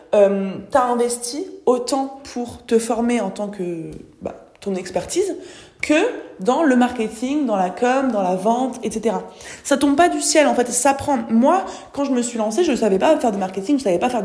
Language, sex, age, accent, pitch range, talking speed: French, female, 20-39, French, 205-255 Hz, 215 wpm